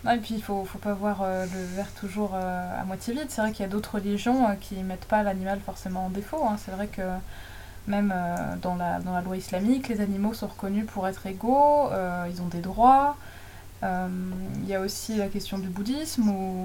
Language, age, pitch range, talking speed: French, 20-39, 190-235 Hz, 235 wpm